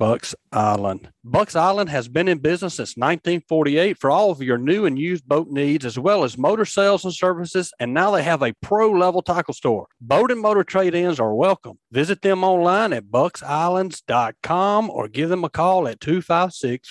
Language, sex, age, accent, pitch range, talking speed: English, male, 40-59, American, 140-180 Hz, 190 wpm